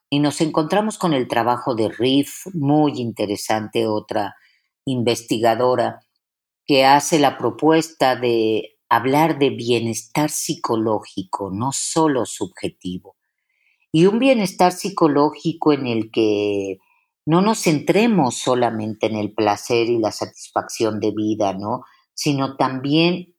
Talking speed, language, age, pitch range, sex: 115 wpm, Spanish, 50-69, 115-165 Hz, female